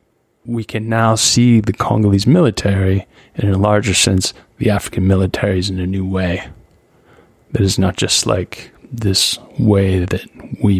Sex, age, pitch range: male, 20-39, 95-110 Hz